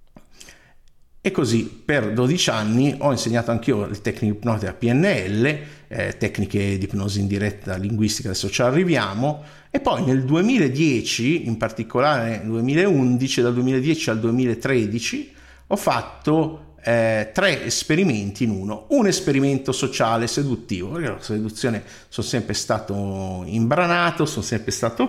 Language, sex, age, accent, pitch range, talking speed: Italian, male, 50-69, native, 100-130 Hz, 135 wpm